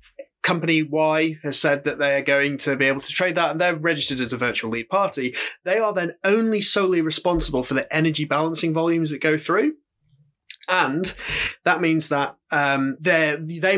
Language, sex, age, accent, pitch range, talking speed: English, male, 30-49, British, 140-170 Hz, 180 wpm